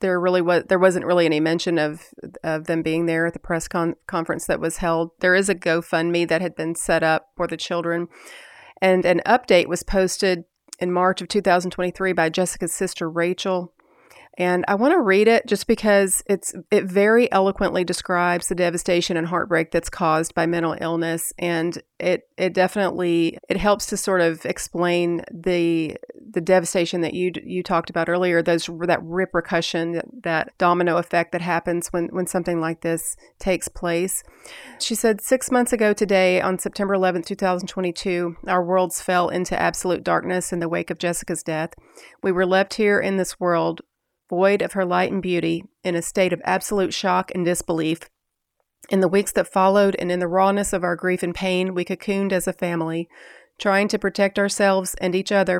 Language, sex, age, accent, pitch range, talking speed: English, female, 30-49, American, 170-195 Hz, 190 wpm